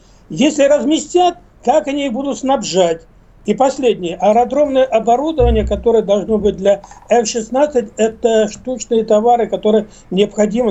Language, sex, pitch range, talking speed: Russian, male, 200-250 Hz, 120 wpm